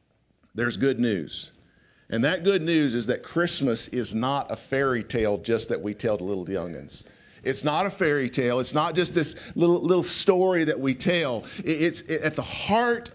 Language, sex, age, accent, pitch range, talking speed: English, male, 50-69, American, 135-180 Hz, 185 wpm